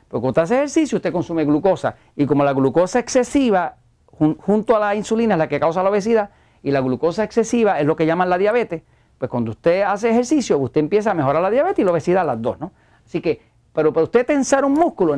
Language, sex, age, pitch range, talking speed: Spanish, male, 40-59, 150-235 Hz, 230 wpm